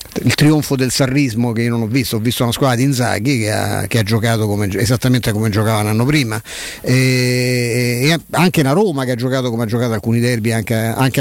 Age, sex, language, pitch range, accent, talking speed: 50-69, male, Italian, 115-140 Hz, native, 220 wpm